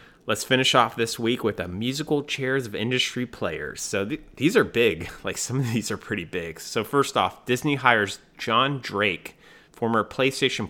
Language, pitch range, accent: English, 95-125 Hz, American